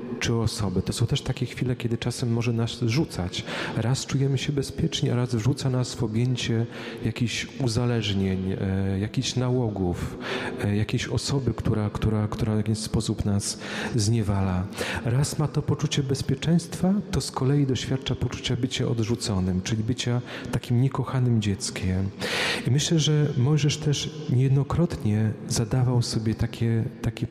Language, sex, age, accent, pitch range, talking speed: Polish, male, 40-59, native, 110-130 Hz, 145 wpm